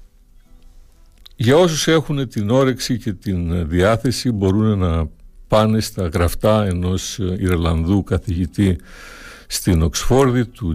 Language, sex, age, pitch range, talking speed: Greek, male, 60-79, 85-120 Hz, 105 wpm